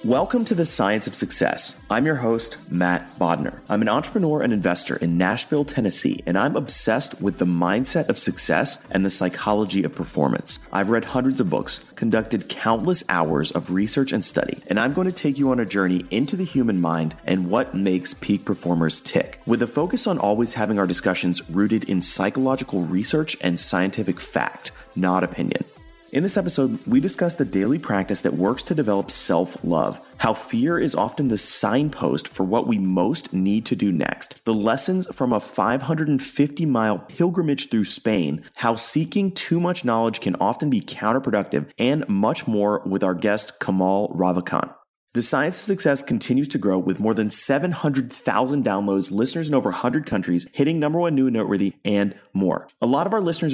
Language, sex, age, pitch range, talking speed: English, male, 30-49, 95-140 Hz, 180 wpm